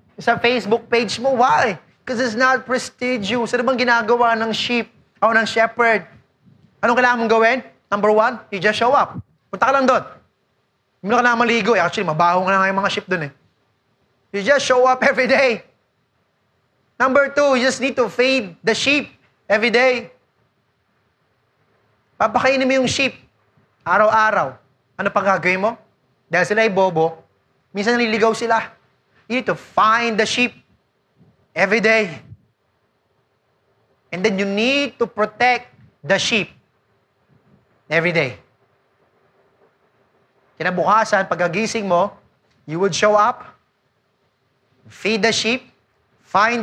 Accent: Filipino